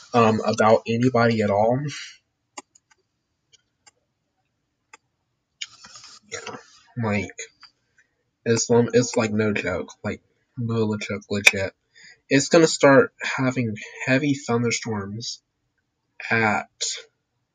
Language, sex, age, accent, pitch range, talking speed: English, male, 20-39, American, 110-135 Hz, 80 wpm